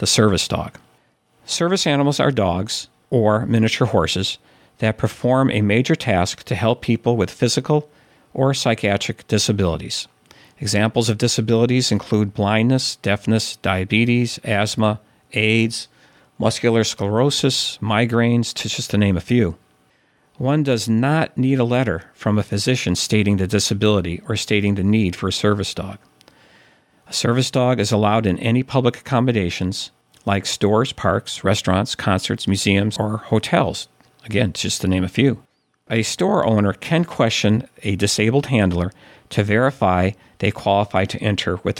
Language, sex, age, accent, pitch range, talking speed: English, male, 50-69, American, 100-120 Hz, 140 wpm